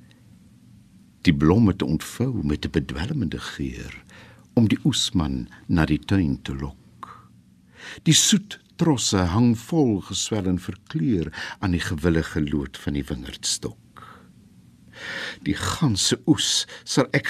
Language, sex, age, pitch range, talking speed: Italian, male, 60-79, 80-130 Hz, 125 wpm